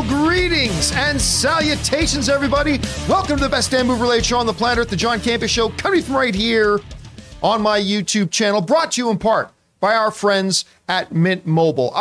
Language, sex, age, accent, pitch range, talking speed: English, male, 40-59, American, 180-235 Hz, 195 wpm